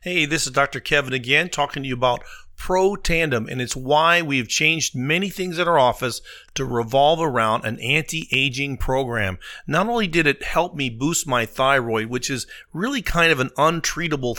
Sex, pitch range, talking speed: male, 120-165 Hz, 185 wpm